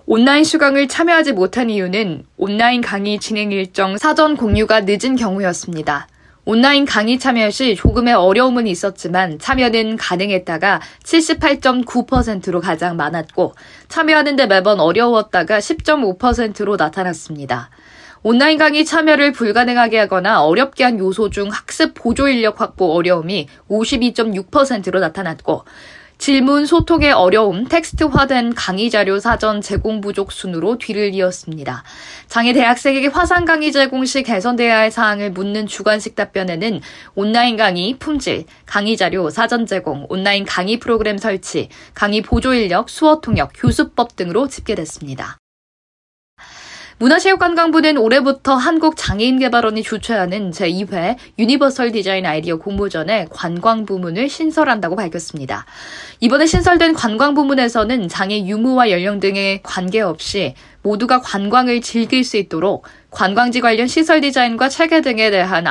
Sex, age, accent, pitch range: female, 20-39, native, 195-260 Hz